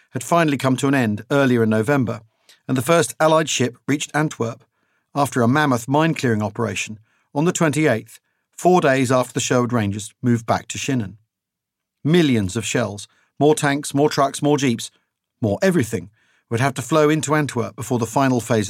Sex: male